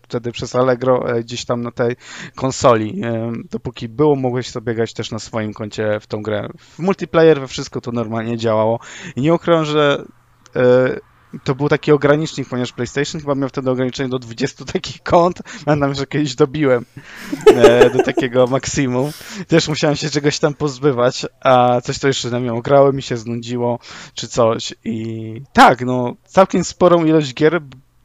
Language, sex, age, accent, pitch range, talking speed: Polish, male, 20-39, native, 125-150 Hz, 165 wpm